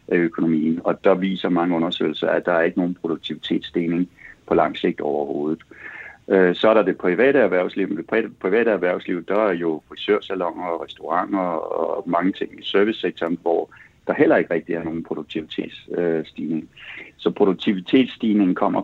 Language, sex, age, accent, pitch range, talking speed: Danish, male, 60-79, native, 85-100 Hz, 155 wpm